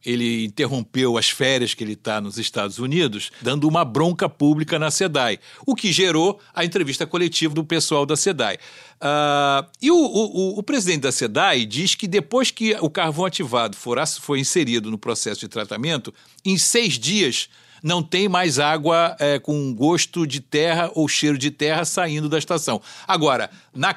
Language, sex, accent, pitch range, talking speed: Portuguese, male, Brazilian, 140-180 Hz, 165 wpm